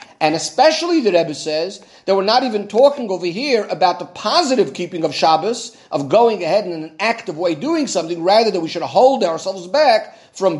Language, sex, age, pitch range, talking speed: English, male, 40-59, 165-235 Hz, 200 wpm